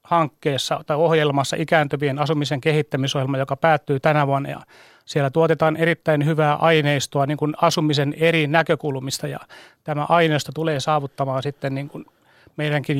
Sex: male